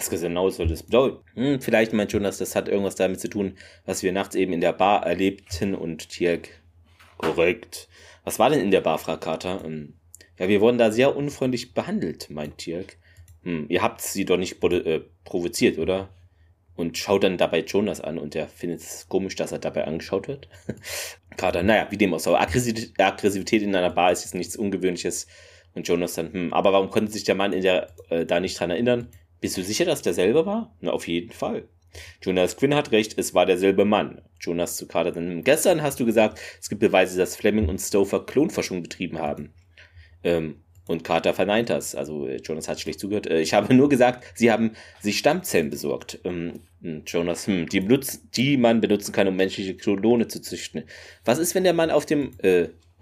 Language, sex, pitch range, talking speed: German, male, 85-115 Hz, 205 wpm